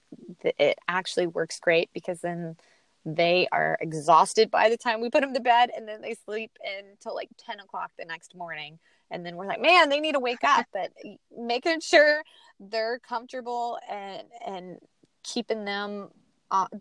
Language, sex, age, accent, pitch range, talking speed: English, female, 20-39, American, 175-230 Hz, 170 wpm